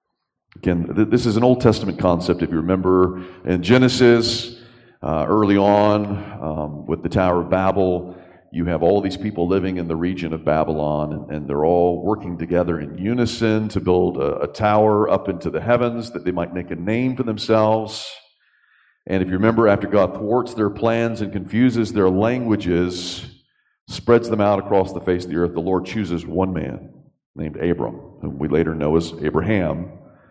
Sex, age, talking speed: male, 40-59, 180 wpm